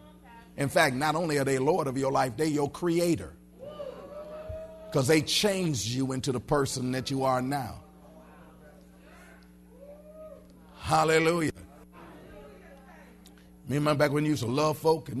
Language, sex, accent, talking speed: English, male, American, 135 wpm